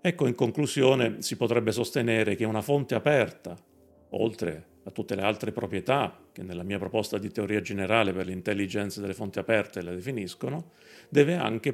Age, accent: 40-59, native